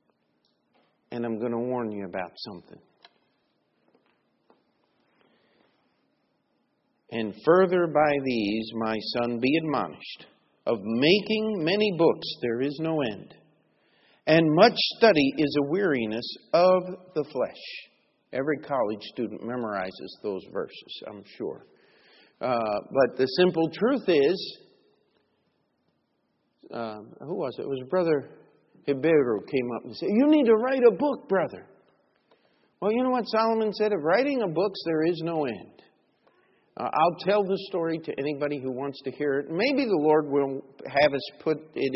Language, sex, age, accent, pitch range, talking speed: English, male, 50-69, American, 125-195 Hz, 145 wpm